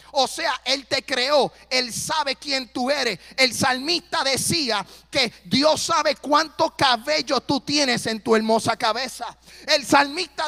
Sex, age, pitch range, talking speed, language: male, 30-49, 235-290 Hz, 150 wpm, Spanish